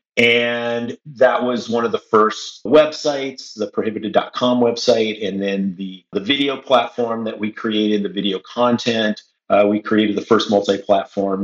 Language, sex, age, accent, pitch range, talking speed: English, male, 40-59, American, 100-120 Hz, 150 wpm